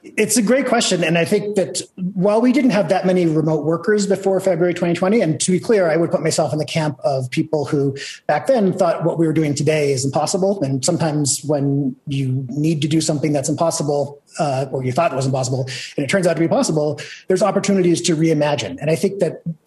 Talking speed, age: 230 wpm, 30-49